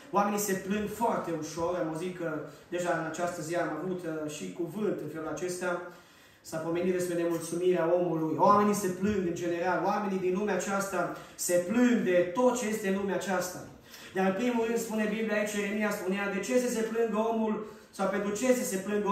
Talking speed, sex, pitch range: 200 wpm, male, 170-205 Hz